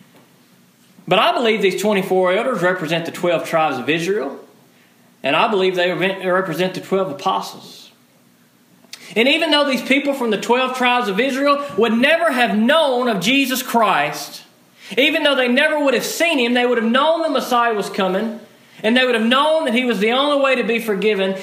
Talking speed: 190 wpm